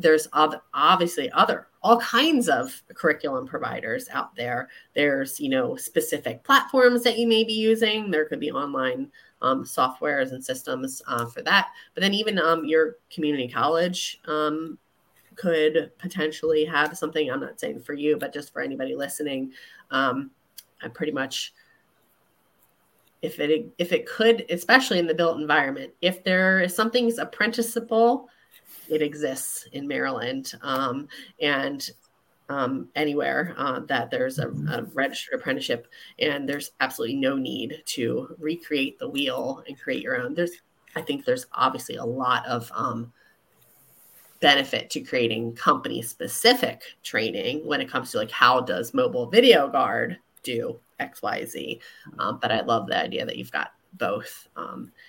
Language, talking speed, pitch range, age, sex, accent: English, 150 wpm, 150-240 Hz, 30-49, female, American